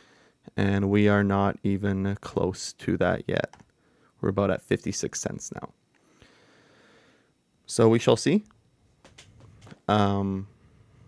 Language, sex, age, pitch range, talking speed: English, male, 20-39, 100-110 Hz, 110 wpm